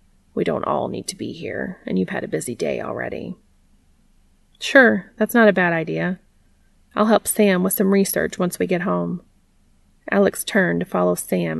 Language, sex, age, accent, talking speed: English, female, 30-49, American, 180 wpm